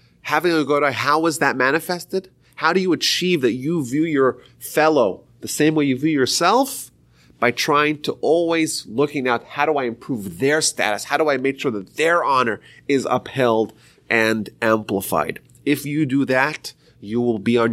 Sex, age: male, 30-49